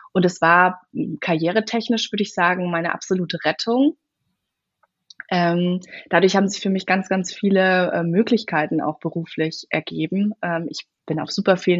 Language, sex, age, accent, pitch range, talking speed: German, female, 20-39, German, 170-215 Hz, 135 wpm